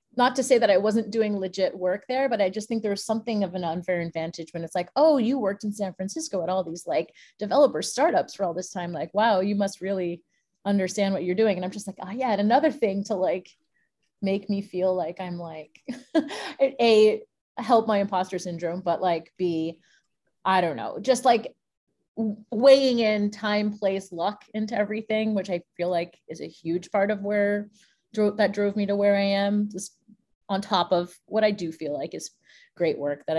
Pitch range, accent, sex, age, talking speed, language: 180-220 Hz, American, female, 30-49, 205 wpm, English